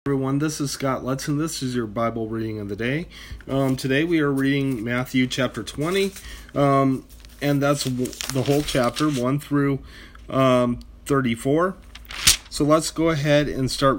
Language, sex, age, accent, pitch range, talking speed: English, male, 30-49, American, 115-140 Hz, 160 wpm